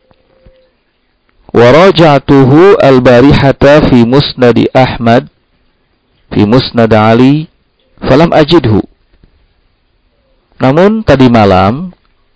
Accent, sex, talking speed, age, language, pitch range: native, male, 70 wpm, 50-69, Indonesian, 105-145 Hz